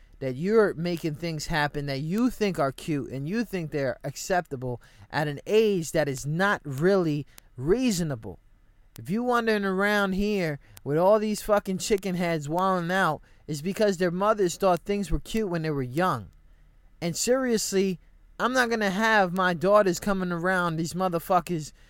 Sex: male